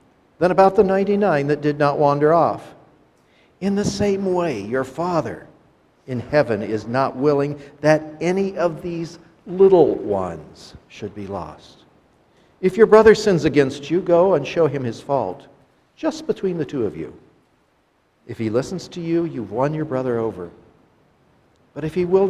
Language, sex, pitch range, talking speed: English, male, 135-185 Hz, 165 wpm